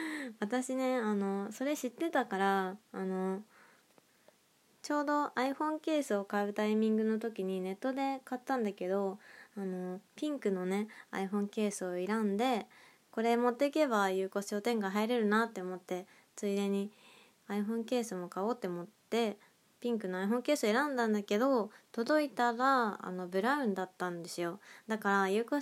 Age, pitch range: 20-39, 195-245 Hz